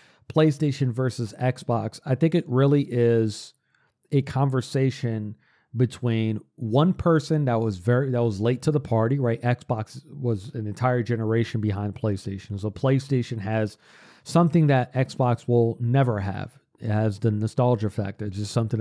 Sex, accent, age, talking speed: male, American, 40-59, 150 wpm